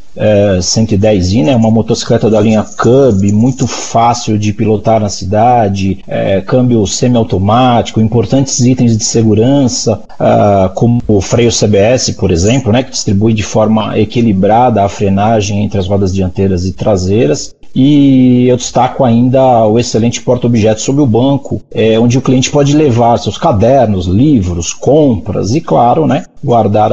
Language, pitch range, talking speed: Portuguese, 110-135 Hz, 140 wpm